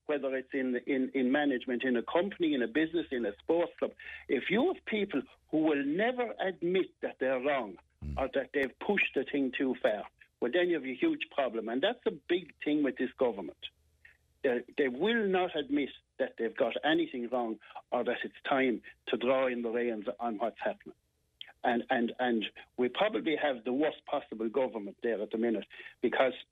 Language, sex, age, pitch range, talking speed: English, male, 60-79, 125-160 Hz, 195 wpm